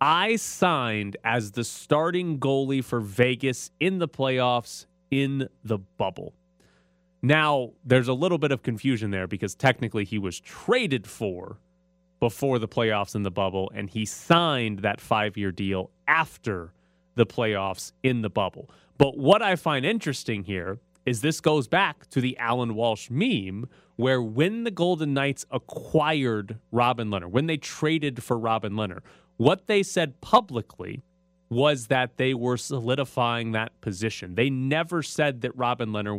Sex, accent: male, American